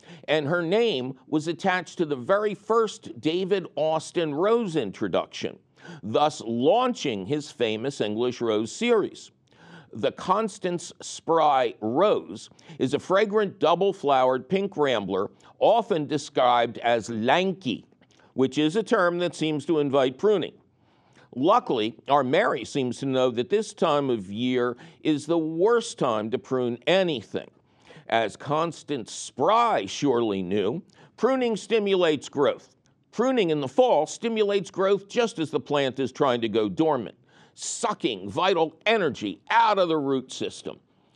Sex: male